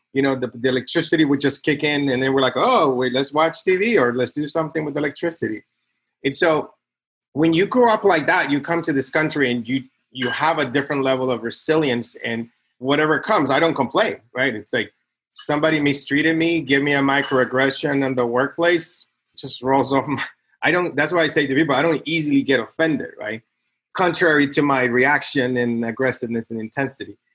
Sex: male